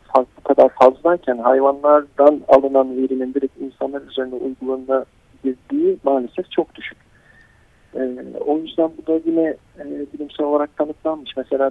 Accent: native